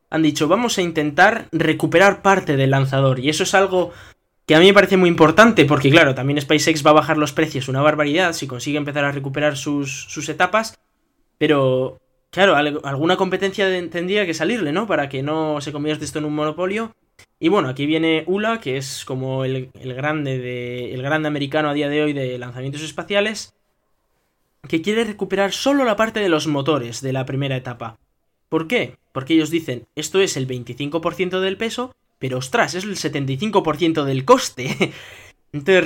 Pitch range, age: 135-180 Hz, 20-39